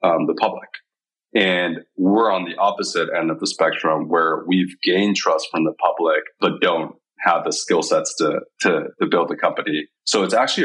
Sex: male